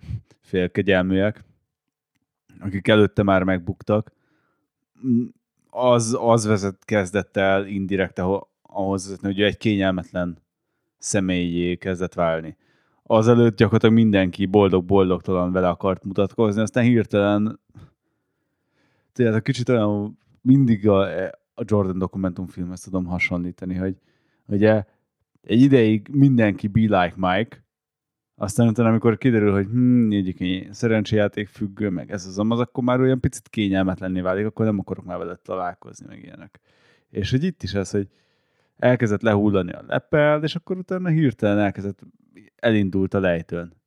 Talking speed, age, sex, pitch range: 125 wpm, 20-39, male, 95-115 Hz